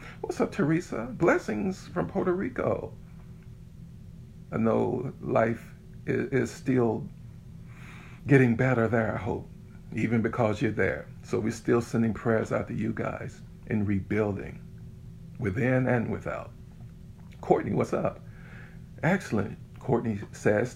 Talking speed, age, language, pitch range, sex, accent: 120 wpm, 50-69, English, 110-130 Hz, male, American